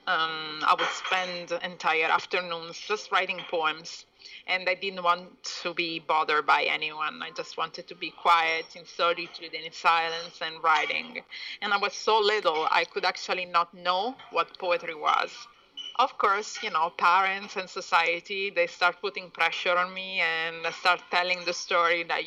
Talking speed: 165 wpm